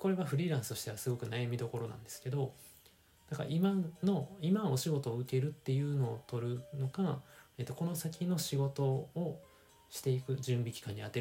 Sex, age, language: male, 20-39, Japanese